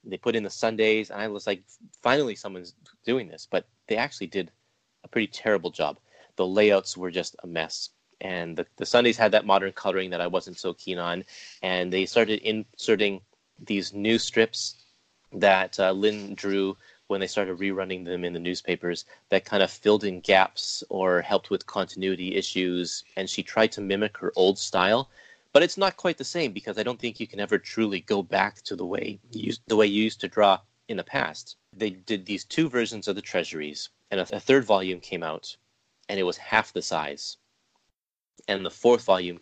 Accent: American